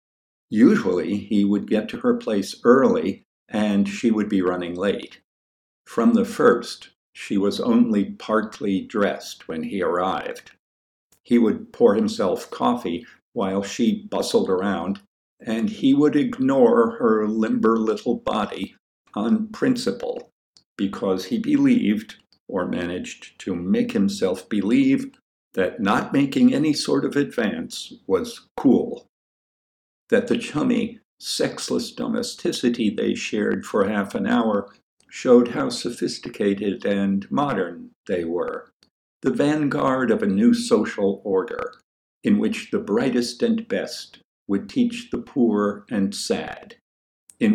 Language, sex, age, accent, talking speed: English, male, 50-69, American, 125 wpm